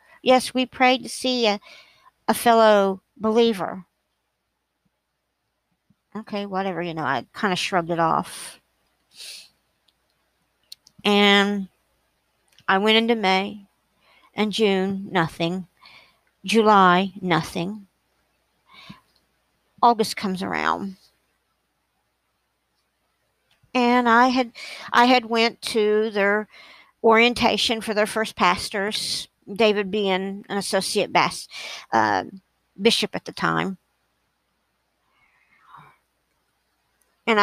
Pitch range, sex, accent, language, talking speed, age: 190-230 Hz, female, American, English, 90 wpm, 60-79